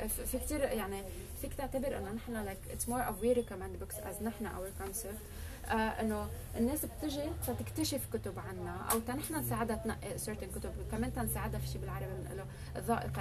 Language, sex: English, female